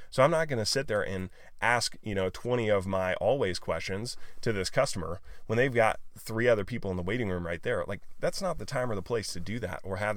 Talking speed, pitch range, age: 260 wpm, 95-115 Hz, 30-49